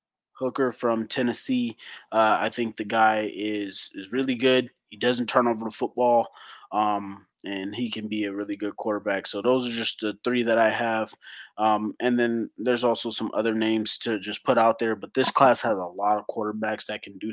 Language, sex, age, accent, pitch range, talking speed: English, male, 20-39, American, 110-130 Hz, 210 wpm